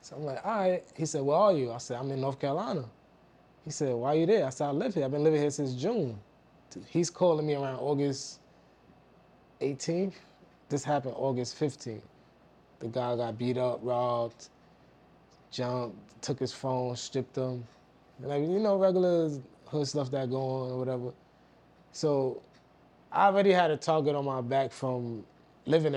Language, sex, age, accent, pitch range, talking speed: English, male, 20-39, American, 125-155 Hz, 180 wpm